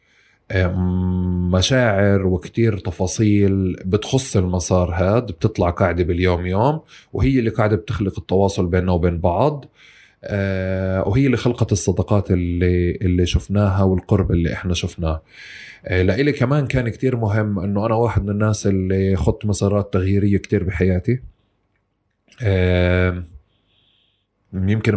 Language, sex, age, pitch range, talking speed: Arabic, male, 20-39, 90-105 Hz, 110 wpm